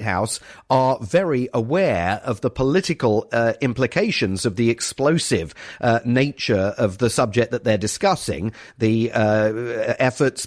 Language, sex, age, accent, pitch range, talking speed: English, male, 40-59, British, 115-140 Hz, 130 wpm